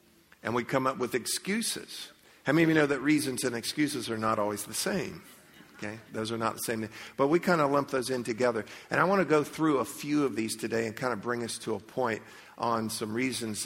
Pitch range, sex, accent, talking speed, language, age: 110-135 Hz, male, American, 245 wpm, English, 50-69